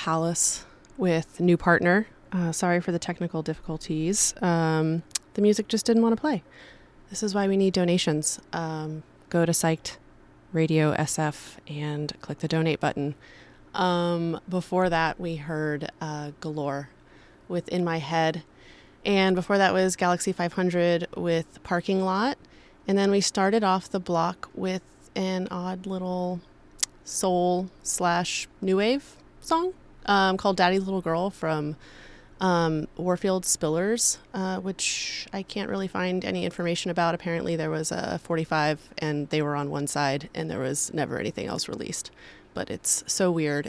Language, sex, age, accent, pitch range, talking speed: Italian, female, 30-49, American, 155-185 Hz, 150 wpm